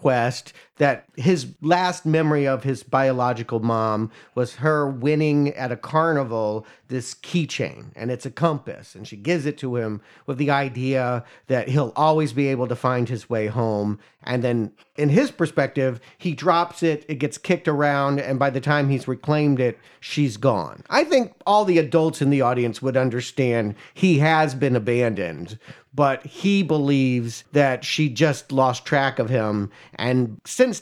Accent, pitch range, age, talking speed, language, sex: American, 120-150 Hz, 40-59, 170 wpm, English, male